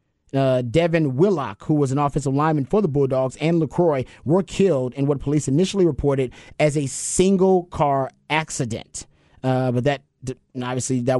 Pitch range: 140-180 Hz